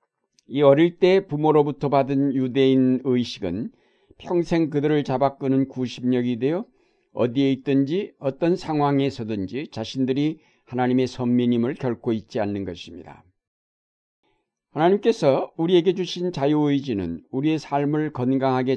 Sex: male